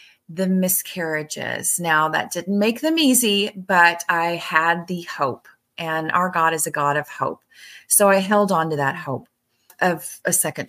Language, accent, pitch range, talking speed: English, American, 155-215 Hz, 175 wpm